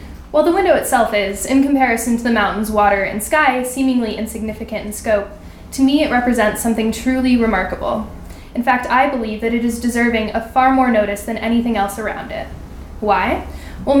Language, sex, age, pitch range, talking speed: English, female, 10-29, 215-260 Hz, 185 wpm